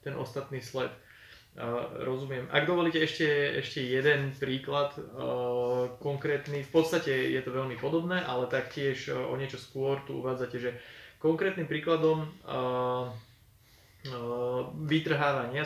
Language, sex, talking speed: Slovak, male, 125 wpm